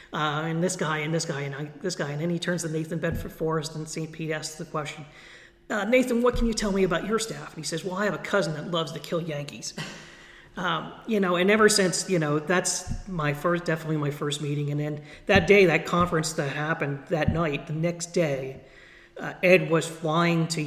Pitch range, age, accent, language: 140-175 Hz, 40-59, American, English